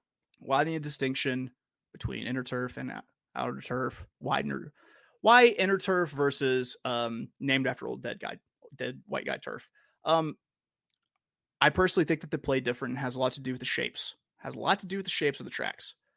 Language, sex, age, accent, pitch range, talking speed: English, male, 30-49, American, 130-180 Hz, 200 wpm